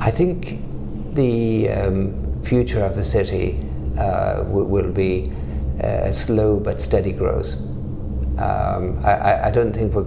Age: 60-79